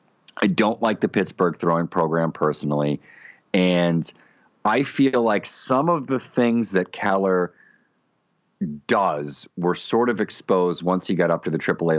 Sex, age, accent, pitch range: male, 40-59, American, 80-115 Hz